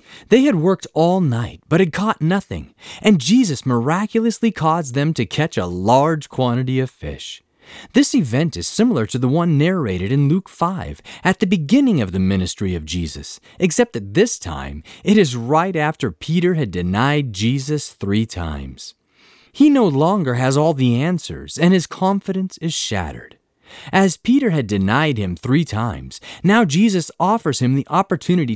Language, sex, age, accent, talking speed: English, male, 30-49, American, 165 wpm